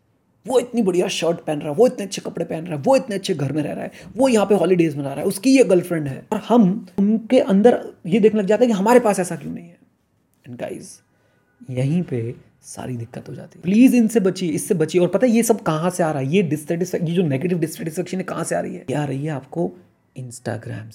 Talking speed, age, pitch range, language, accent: 255 wpm, 30-49, 150-205 Hz, Hindi, native